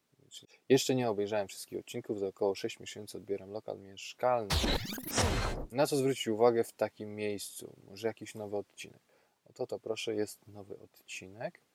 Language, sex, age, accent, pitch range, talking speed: Polish, male, 20-39, native, 95-115 Hz, 155 wpm